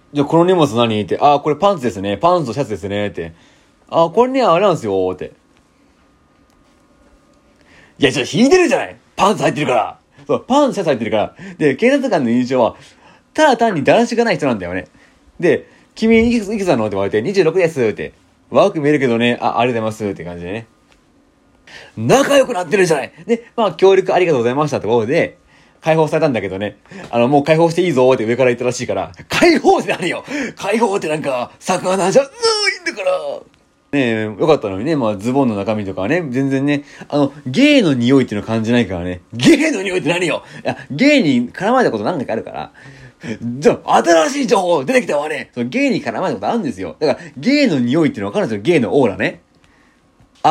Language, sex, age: Japanese, male, 30-49